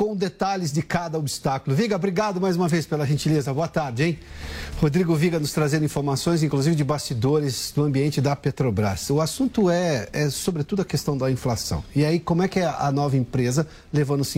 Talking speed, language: 190 wpm, Portuguese